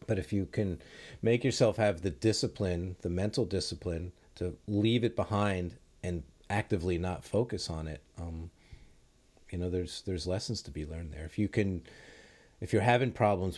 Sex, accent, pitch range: male, American, 85-105 Hz